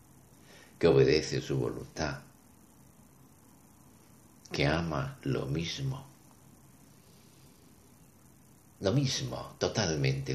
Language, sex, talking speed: Spanish, male, 65 wpm